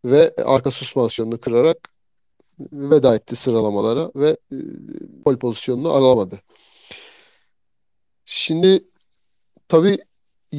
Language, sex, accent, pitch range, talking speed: Turkish, male, native, 125-170 Hz, 75 wpm